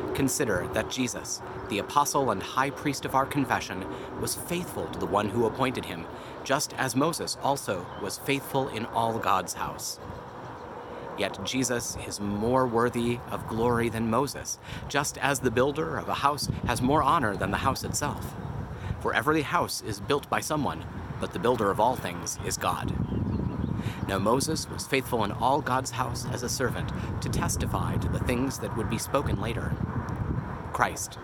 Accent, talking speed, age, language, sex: American, 170 wpm, 30-49, English, male